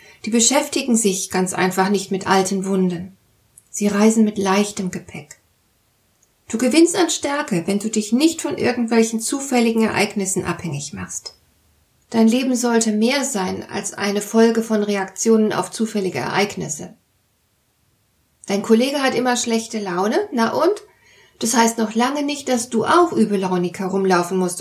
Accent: German